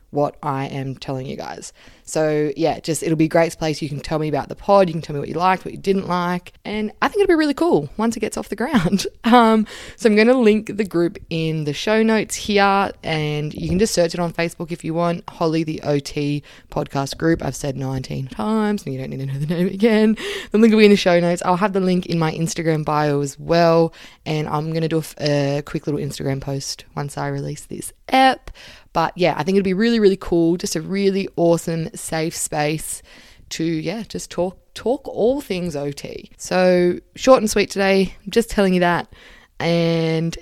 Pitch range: 155-200 Hz